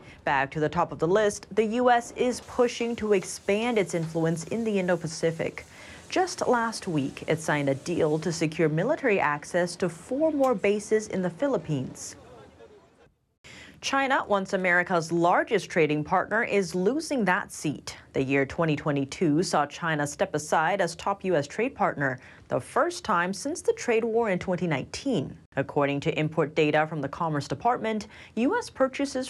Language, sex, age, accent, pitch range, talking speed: English, female, 30-49, American, 155-230 Hz, 160 wpm